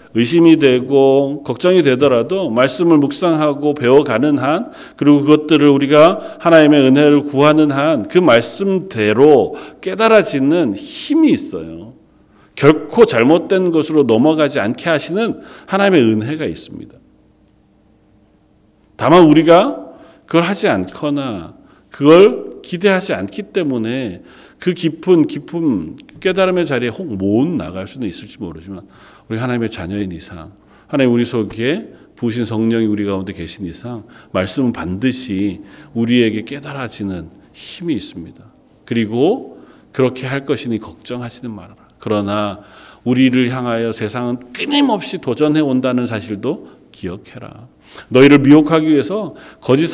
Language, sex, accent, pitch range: Korean, male, native, 110-160 Hz